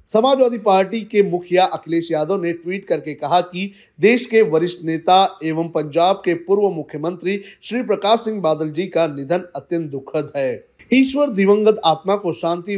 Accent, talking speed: native, 165 wpm